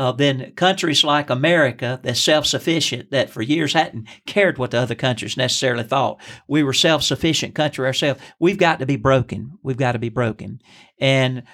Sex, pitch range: male, 130-165 Hz